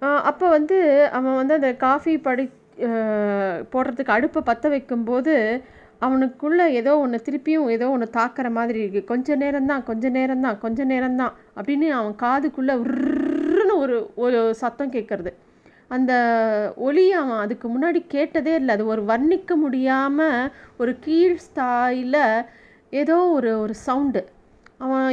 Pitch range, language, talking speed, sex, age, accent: 230-290 Hz, Tamil, 125 wpm, female, 30-49, native